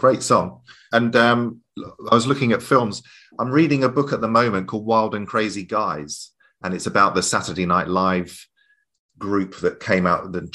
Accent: British